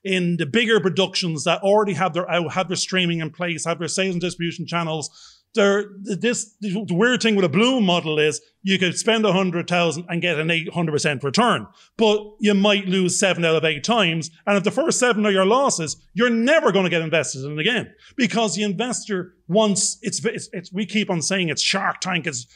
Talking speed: 220 wpm